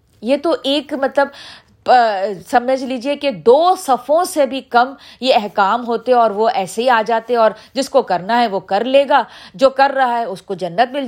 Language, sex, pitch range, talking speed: Urdu, female, 220-300 Hz, 205 wpm